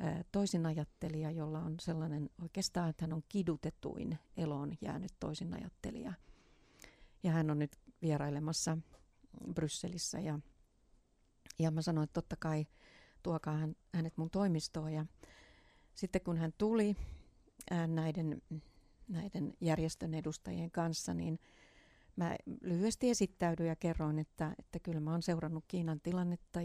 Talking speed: 115 wpm